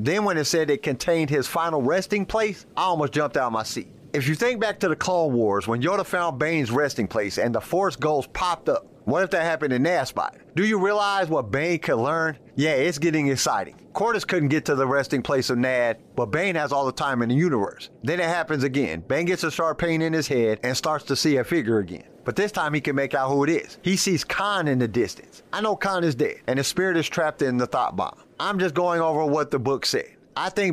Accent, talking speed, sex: American, 255 wpm, male